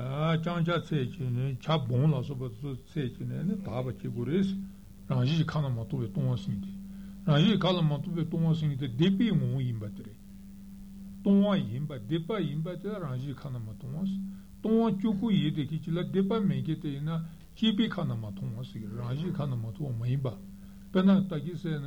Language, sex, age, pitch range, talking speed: Italian, male, 60-79, 130-190 Hz, 95 wpm